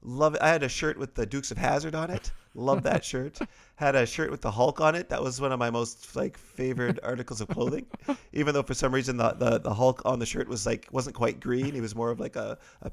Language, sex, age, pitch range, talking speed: English, male, 30-49, 120-160 Hz, 275 wpm